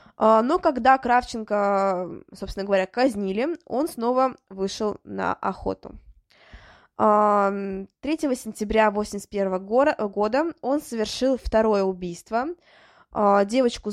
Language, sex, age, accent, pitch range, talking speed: Russian, female, 20-39, native, 195-240 Hz, 85 wpm